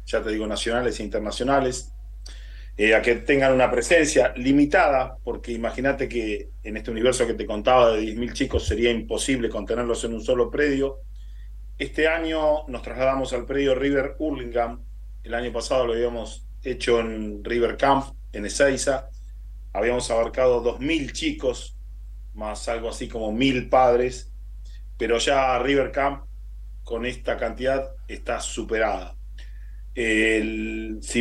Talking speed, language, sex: 135 wpm, Spanish, male